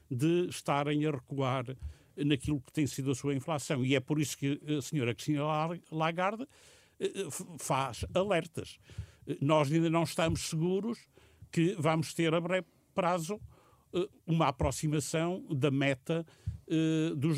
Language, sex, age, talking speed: Portuguese, male, 60-79, 130 wpm